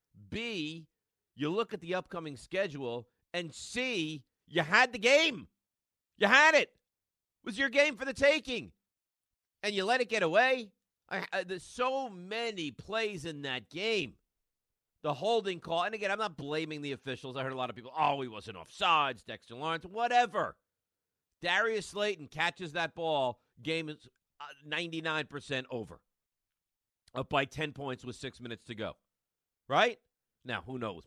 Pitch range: 110-180 Hz